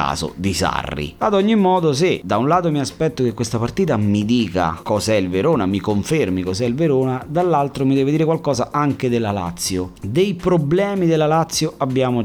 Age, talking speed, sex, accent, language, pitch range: 30-49, 180 wpm, male, native, Italian, 90-125 Hz